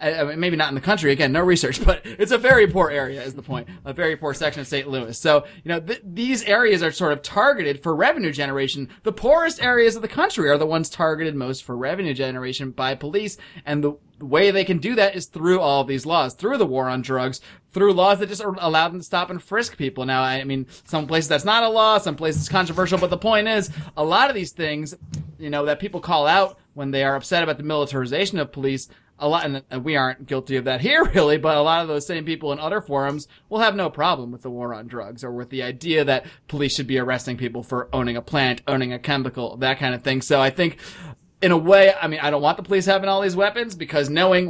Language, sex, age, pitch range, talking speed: English, male, 30-49, 140-195 Hz, 250 wpm